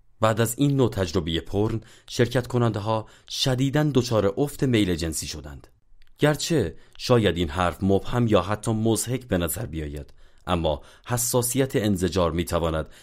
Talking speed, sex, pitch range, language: 135 wpm, male, 85-115 Hz, Persian